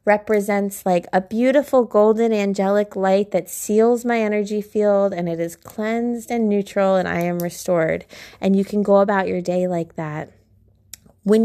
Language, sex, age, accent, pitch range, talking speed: English, female, 20-39, American, 185-215 Hz, 170 wpm